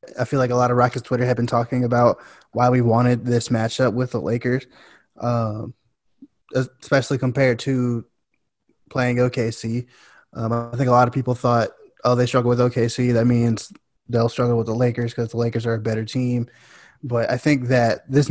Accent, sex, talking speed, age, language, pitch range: American, male, 190 wpm, 10-29, English, 115-125 Hz